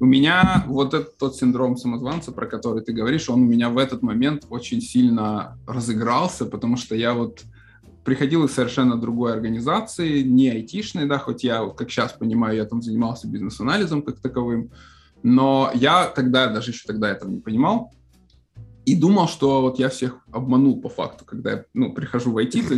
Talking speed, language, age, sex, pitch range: 180 wpm, Russian, 20-39, male, 120-140 Hz